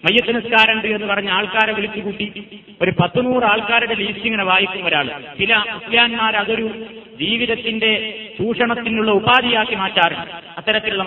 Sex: male